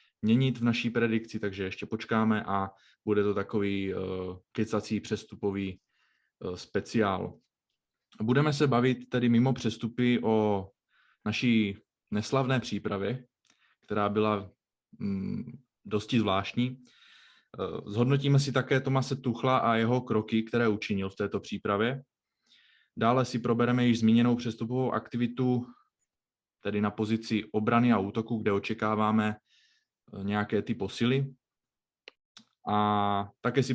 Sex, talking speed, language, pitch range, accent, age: male, 110 wpm, Czech, 105-125 Hz, native, 20-39